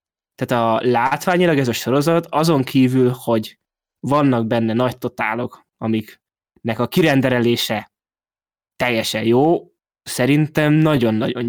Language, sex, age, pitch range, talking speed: Hungarian, male, 20-39, 120-140 Hz, 105 wpm